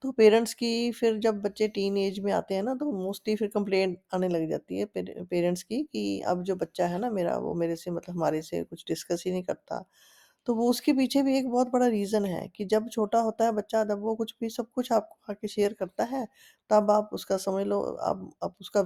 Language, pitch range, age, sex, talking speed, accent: Hindi, 180-225 Hz, 20-39, female, 240 wpm, native